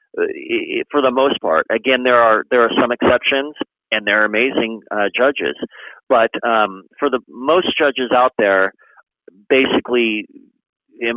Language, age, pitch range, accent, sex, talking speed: English, 40-59, 120-150 Hz, American, male, 140 wpm